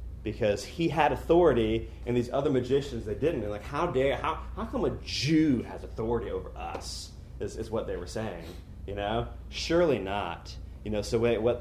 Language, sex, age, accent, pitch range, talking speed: English, male, 30-49, American, 95-125 Hz, 195 wpm